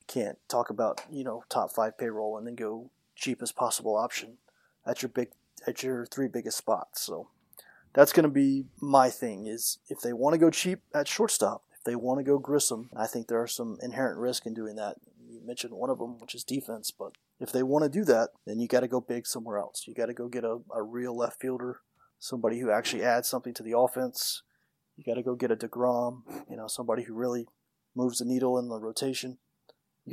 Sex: male